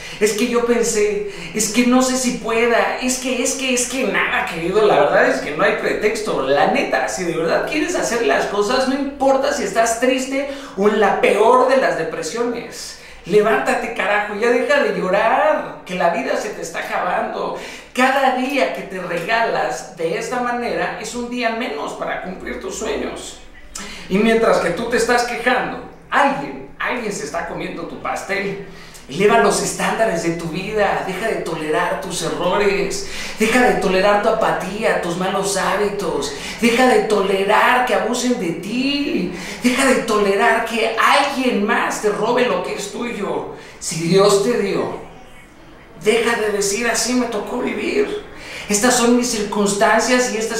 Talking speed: 170 wpm